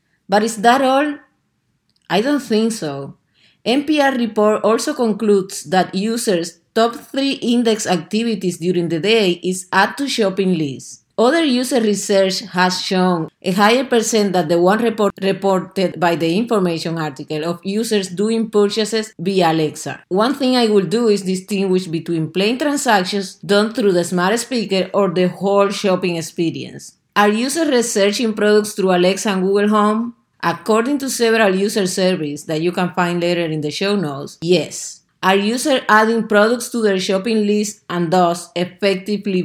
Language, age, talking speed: English, 30-49, 160 wpm